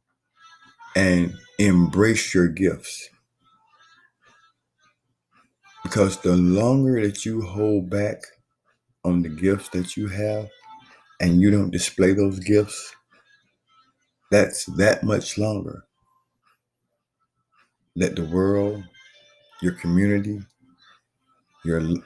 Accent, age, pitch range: American, 50-69, 95-140 Hz